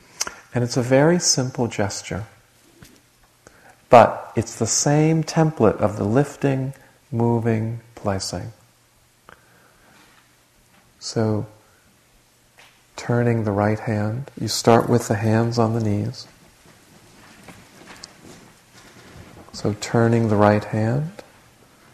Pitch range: 100-125 Hz